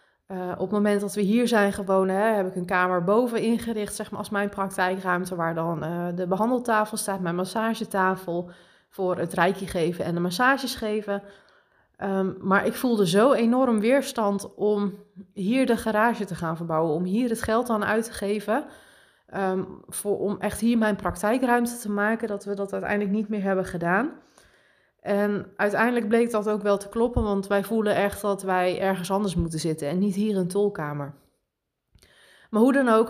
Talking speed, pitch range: 185 wpm, 185-220 Hz